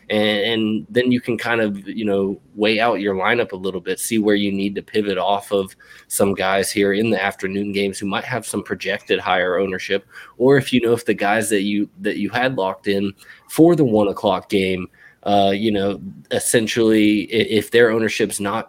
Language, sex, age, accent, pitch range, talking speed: English, male, 20-39, American, 100-110 Hz, 210 wpm